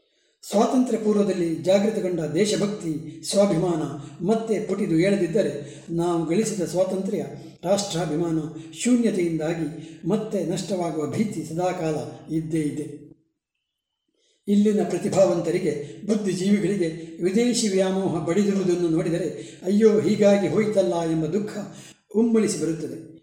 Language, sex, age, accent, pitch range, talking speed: Kannada, male, 60-79, native, 160-200 Hz, 85 wpm